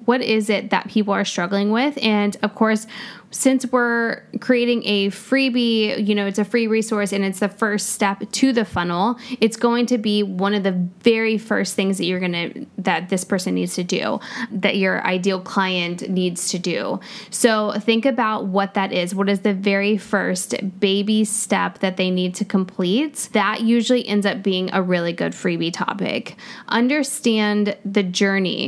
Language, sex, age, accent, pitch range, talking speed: English, female, 10-29, American, 190-220 Hz, 180 wpm